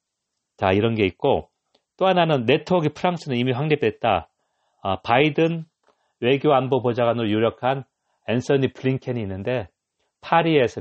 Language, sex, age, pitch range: Korean, male, 40-59, 95-140 Hz